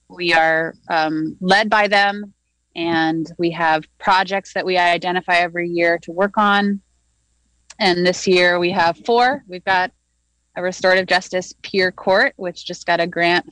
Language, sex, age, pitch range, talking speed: English, female, 30-49, 165-185 Hz, 160 wpm